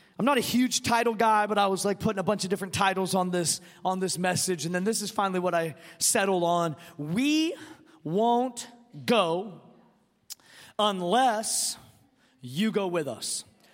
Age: 30-49